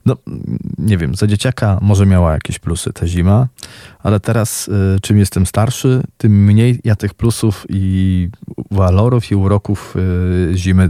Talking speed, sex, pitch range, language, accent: 155 wpm, male, 95-110 Hz, Polish, native